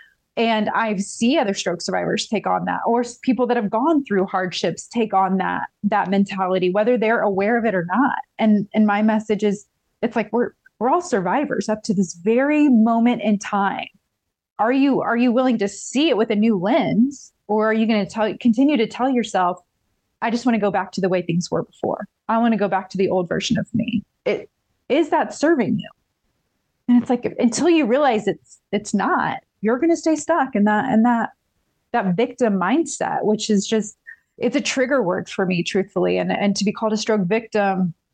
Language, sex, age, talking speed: English, female, 20-39, 210 wpm